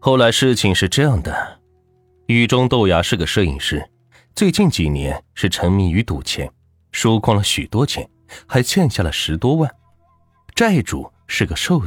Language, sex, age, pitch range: Chinese, male, 30-49, 85-120 Hz